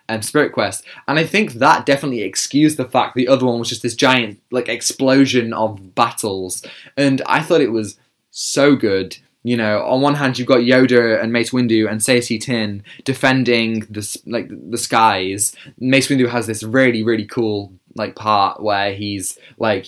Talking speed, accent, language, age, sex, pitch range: 180 wpm, British, English, 20-39, male, 105-125 Hz